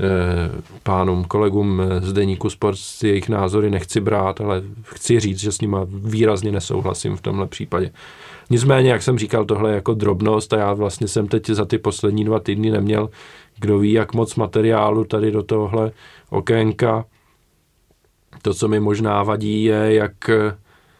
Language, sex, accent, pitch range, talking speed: Czech, male, native, 105-115 Hz, 155 wpm